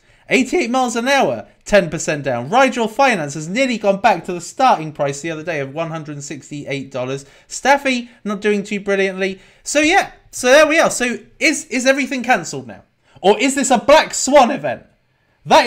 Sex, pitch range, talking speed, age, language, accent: male, 150-250 Hz, 175 wpm, 30-49, English, British